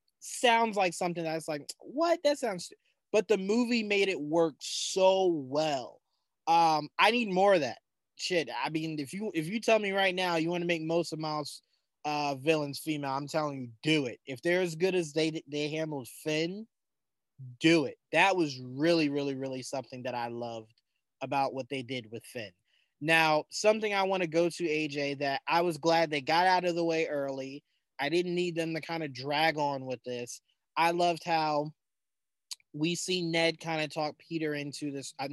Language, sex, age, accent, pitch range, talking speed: English, male, 20-39, American, 145-180 Hz, 195 wpm